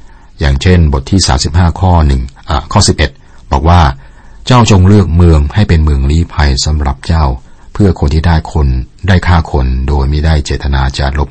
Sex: male